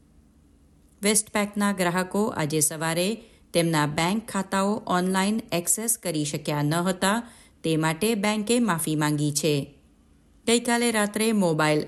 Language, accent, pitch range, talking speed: Gujarati, native, 150-205 Hz, 70 wpm